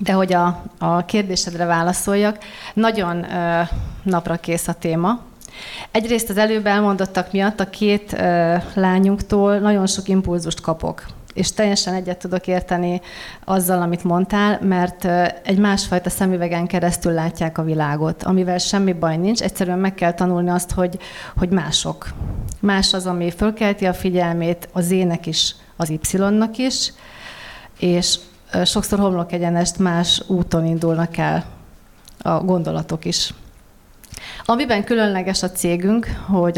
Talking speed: 135 wpm